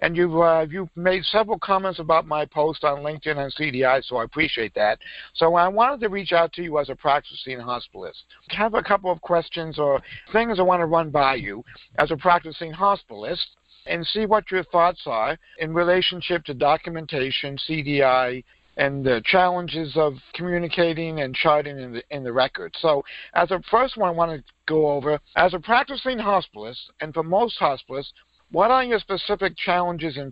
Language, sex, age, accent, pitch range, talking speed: English, male, 50-69, American, 145-180 Hz, 190 wpm